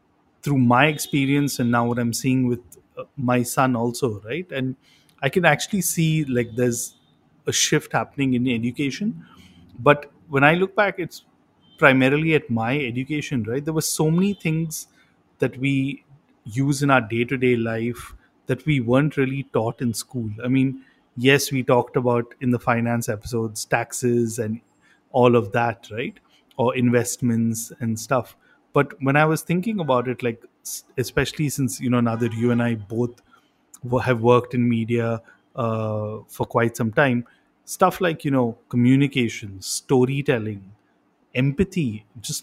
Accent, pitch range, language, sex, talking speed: Indian, 120-140 Hz, English, male, 155 wpm